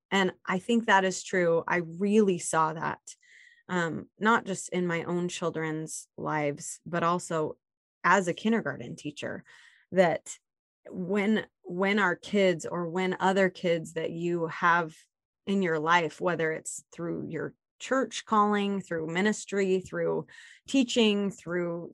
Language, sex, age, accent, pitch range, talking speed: English, female, 20-39, American, 175-215 Hz, 135 wpm